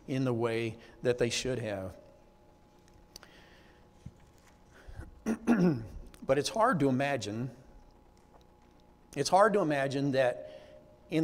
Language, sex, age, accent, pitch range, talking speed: English, male, 50-69, American, 115-160 Hz, 95 wpm